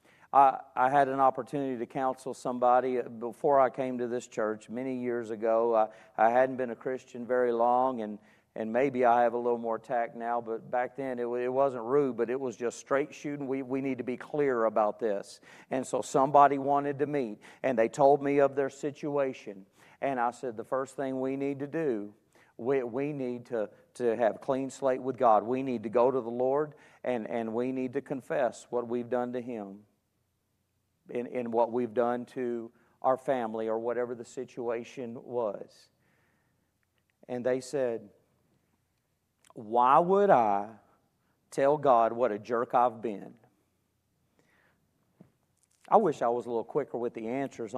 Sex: male